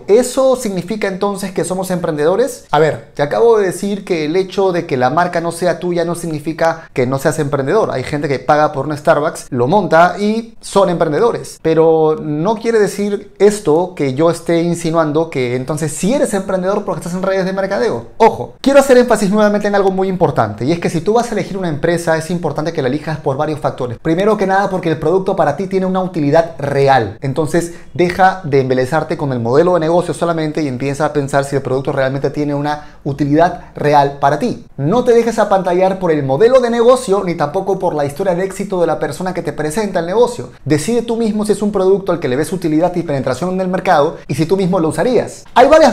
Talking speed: 225 wpm